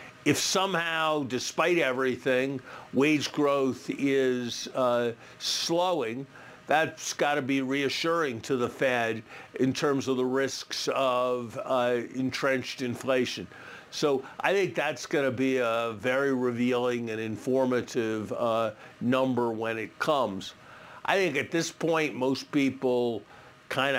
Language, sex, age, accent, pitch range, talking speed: English, male, 50-69, American, 120-140 Hz, 130 wpm